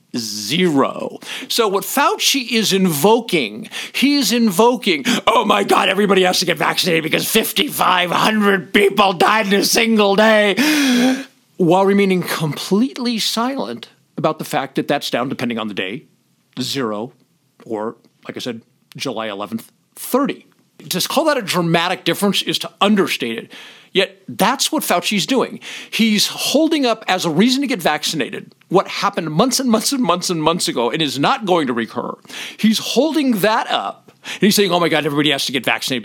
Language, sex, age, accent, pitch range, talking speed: English, male, 50-69, American, 170-230 Hz, 165 wpm